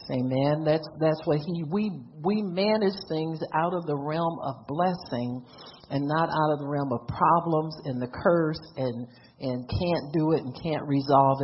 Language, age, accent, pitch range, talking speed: English, 50-69, American, 150-205 Hz, 180 wpm